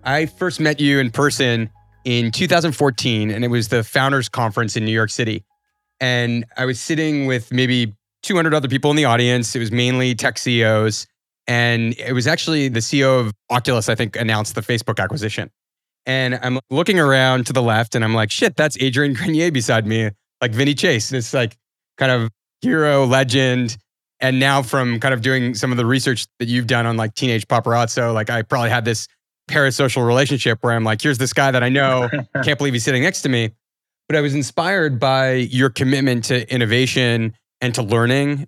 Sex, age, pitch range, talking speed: male, 30-49, 115-135 Hz, 200 wpm